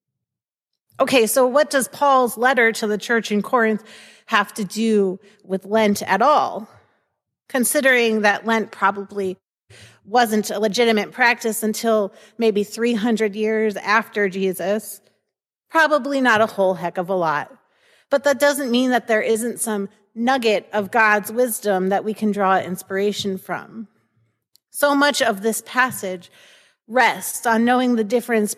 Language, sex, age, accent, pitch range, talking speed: English, female, 30-49, American, 200-240 Hz, 145 wpm